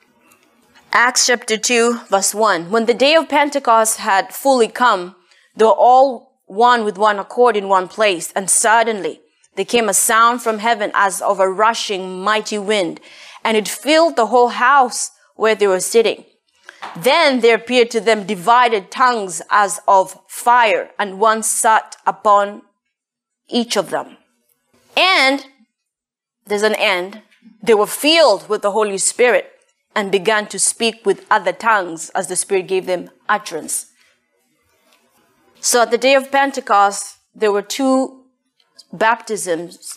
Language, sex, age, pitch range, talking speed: English, female, 20-39, 195-245 Hz, 145 wpm